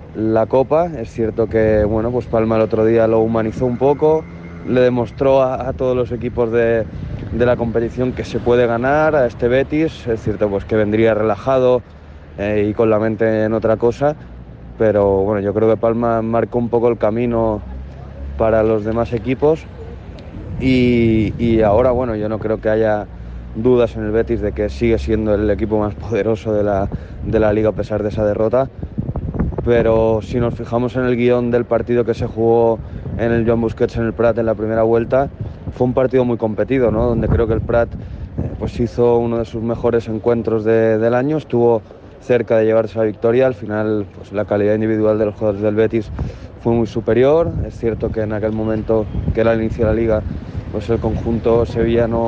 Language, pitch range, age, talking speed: English, 110-120 Hz, 20-39, 200 wpm